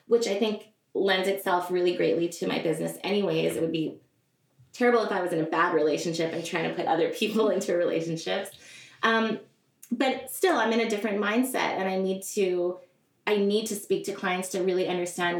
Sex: female